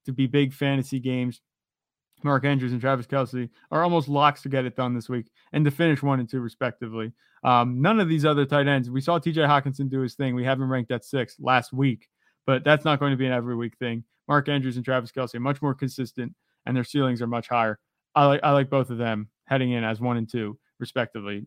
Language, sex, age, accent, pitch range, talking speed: English, male, 30-49, American, 130-150 Hz, 245 wpm